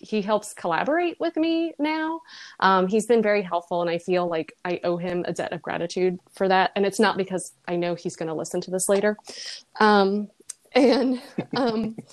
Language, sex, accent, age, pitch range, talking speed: English, female, American, 20-39, 175-220 Hz, 200 wpm